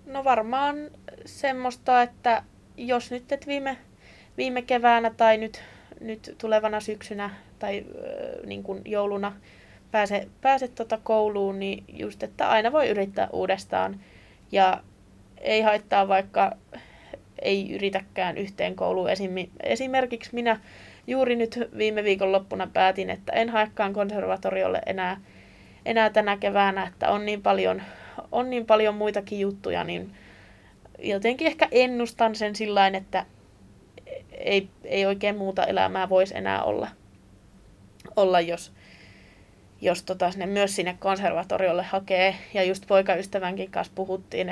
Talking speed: 115 wpm